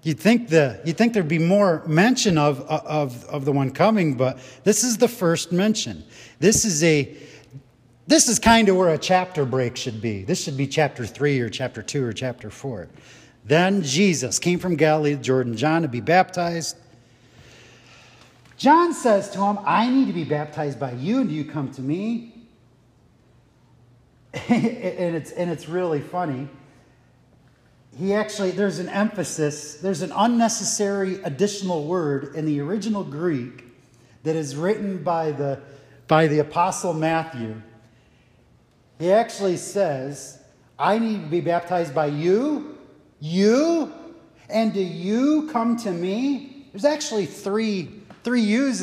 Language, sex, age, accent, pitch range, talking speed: English, male, 40-59, American, 135-200 Hz, 150 wpm